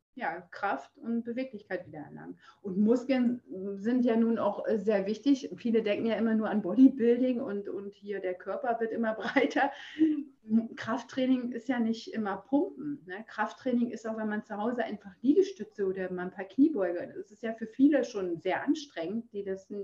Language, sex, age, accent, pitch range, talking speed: German, female, 30-49, German, 195-250 Hz, 180 wpm